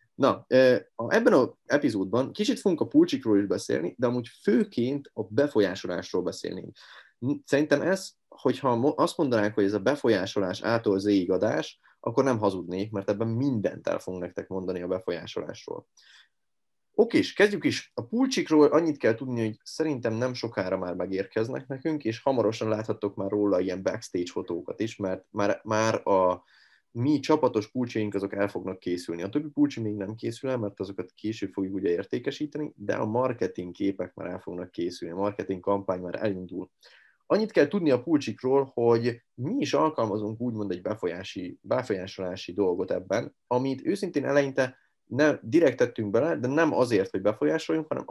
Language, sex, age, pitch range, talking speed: Hungarian, male, 20-39, 100-135 Hz, 155 wpm